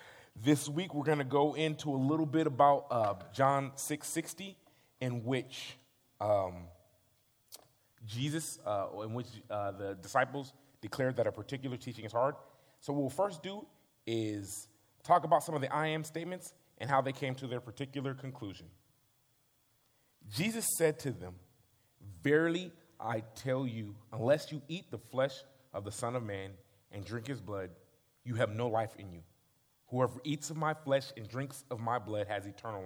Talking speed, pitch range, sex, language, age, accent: 170 wpm, 105-135 Hz, male, English, 30-49, American